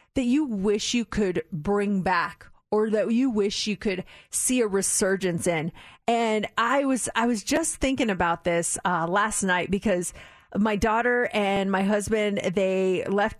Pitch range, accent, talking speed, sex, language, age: 200-275 Hz, American, 165 wpm, female, English, 30-49